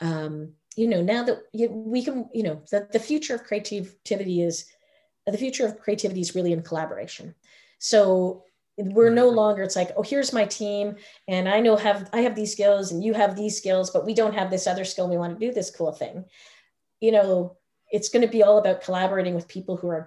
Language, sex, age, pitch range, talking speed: English, female, 30-49, 175-215 Hz, 220 wpm